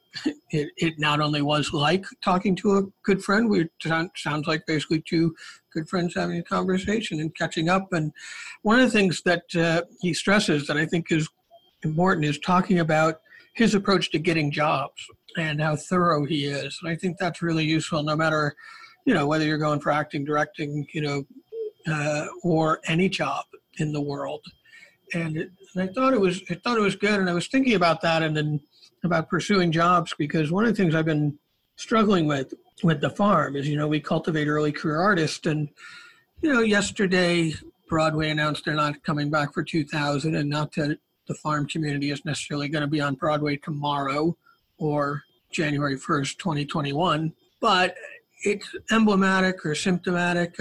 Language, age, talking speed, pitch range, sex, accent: English, 50-69, 185 wpm, 150-190 Hz, male, American